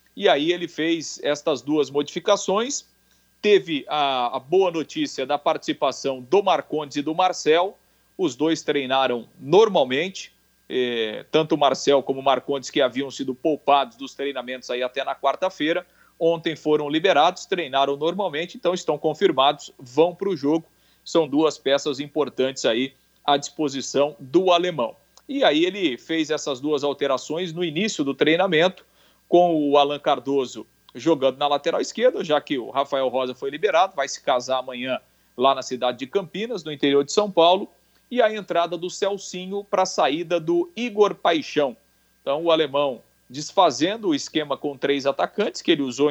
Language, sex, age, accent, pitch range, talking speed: Portuguese, male, 40-59, Brazilian, 140-180 Hz, 160 wpm